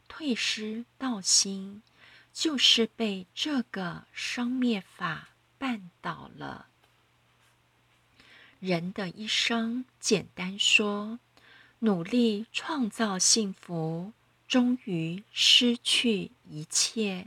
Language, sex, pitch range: Chinese, female, 180-240 Hz